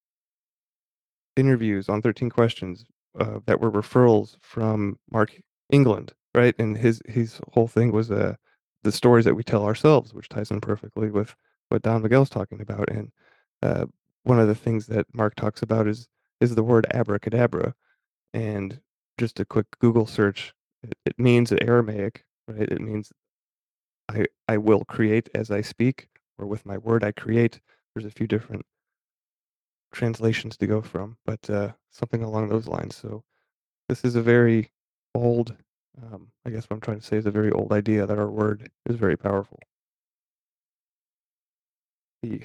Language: English